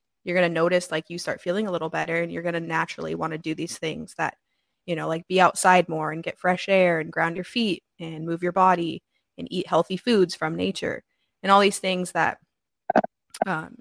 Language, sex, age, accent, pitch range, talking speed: English, female, 20-39, American, 170-190 Hz, 225 wpm